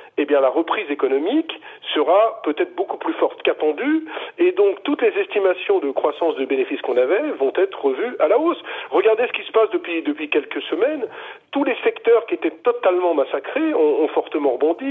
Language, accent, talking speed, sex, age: French, French, 195 wpm, male, 40-59